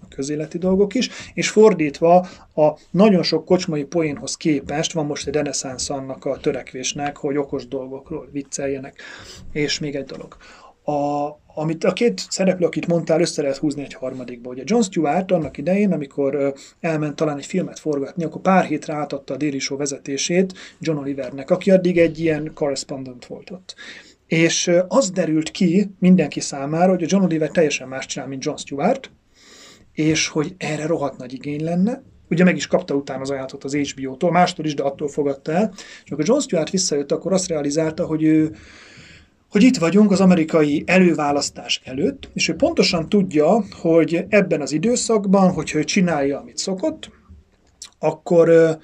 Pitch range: 140-180 Hz